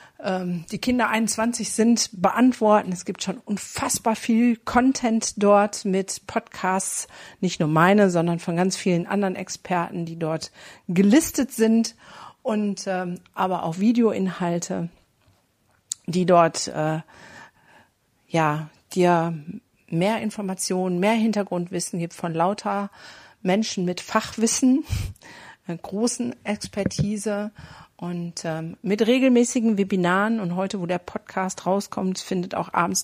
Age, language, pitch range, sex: 50-69, German, 180-220 Hz, female